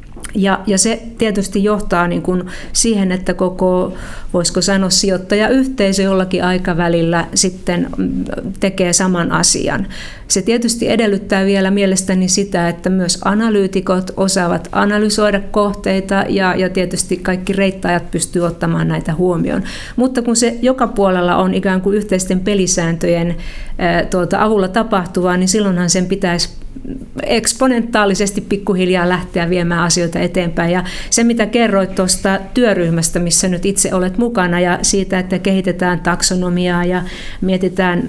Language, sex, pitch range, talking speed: Finnish, female, 180-200 Hz, 130 wpm